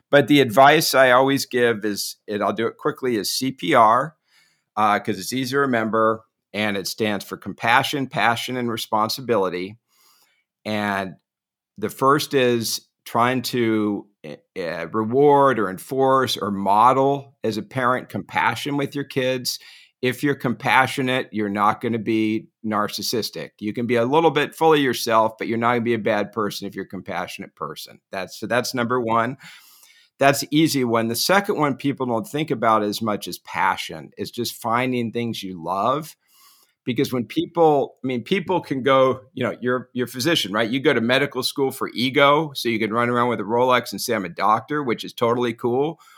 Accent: American